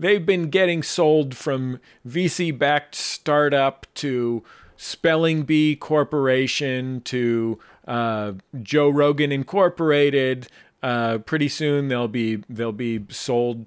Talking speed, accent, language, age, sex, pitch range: 105 wpm, American, English, 40-59, male, 110-140 Hz